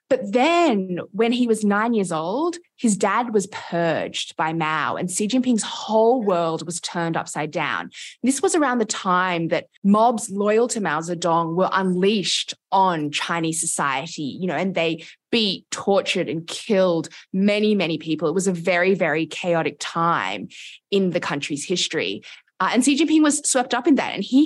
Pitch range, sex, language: 175-225 Hz, female, English